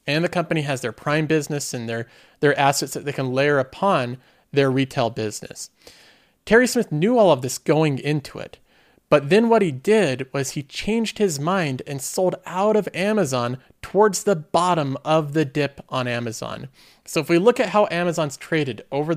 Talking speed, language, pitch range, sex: 190 wpm, English, 135-195 Hz, male